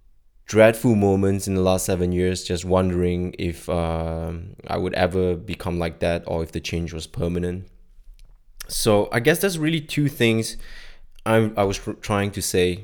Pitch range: 90-105 Hz